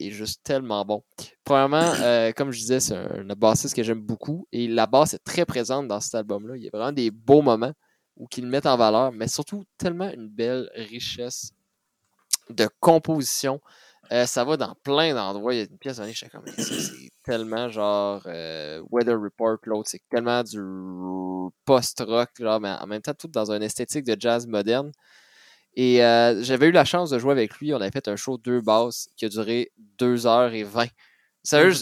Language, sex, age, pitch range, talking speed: French, male, 20-39, 110-140 Hz, 200 wpm